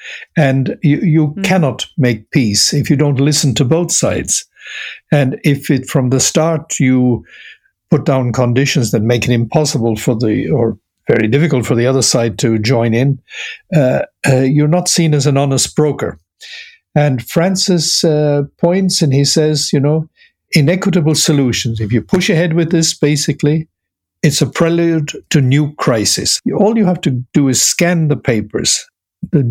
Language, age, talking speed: English, 60-79, 165 wpm